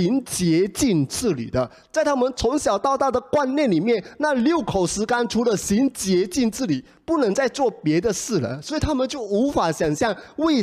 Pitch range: 120-195 Hz